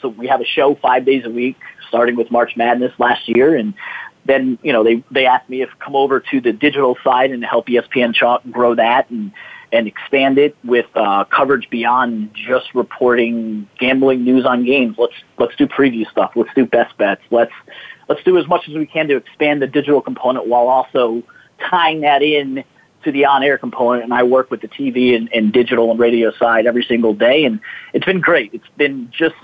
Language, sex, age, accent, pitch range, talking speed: English, male, 30-49, American, 120-145 Hz, 210 wpm